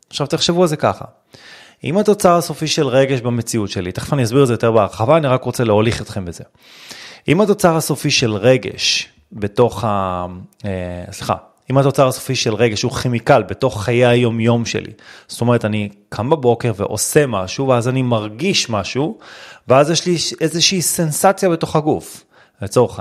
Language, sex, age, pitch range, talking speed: Hebrew, male, 30-49, 115-160 Hz, 165 wpm